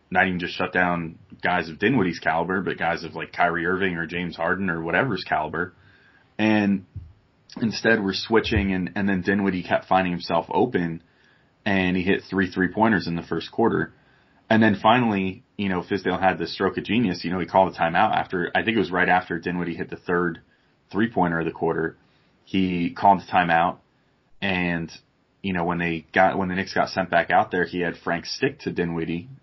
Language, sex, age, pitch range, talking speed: English, male, 30-49, 85-100 Hz, 205 wpm